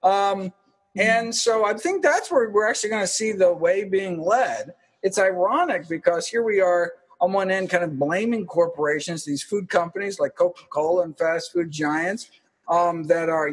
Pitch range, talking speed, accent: 165-225 Hz, 180 wpm, American